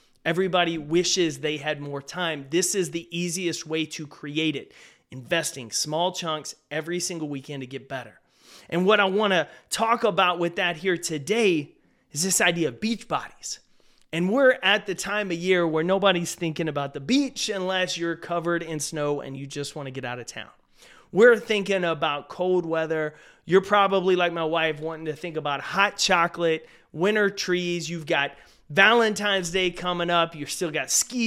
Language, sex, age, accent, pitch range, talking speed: English, male, 30-49, American, 155-190 Hz, 180 wpm